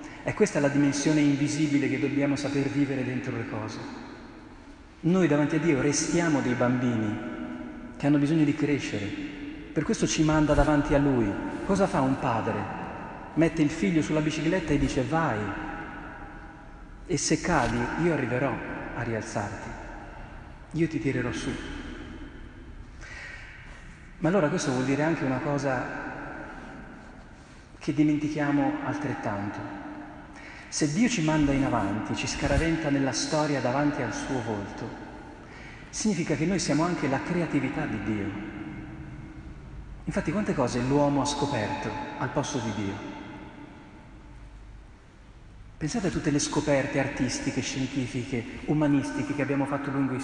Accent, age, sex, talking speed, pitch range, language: native, 40-59, male, 135 wpm, 130-155 Hz, Italian